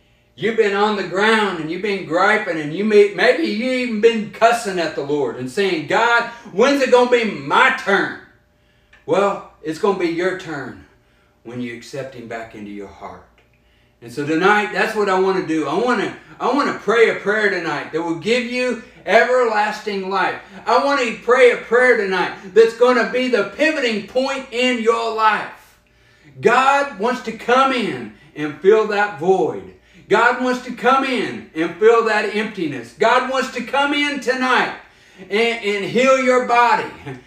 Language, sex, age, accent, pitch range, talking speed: English, male, 60-79, American, 165-245 Hz, 180 wpm